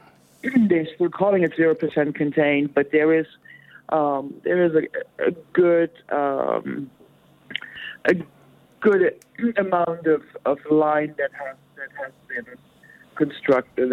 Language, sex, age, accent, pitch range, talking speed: English, male, 50-69, American, 135-155 Hz, 120 wpm